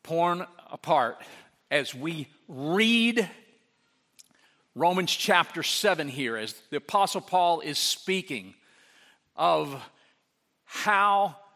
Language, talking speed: English, 90 wpm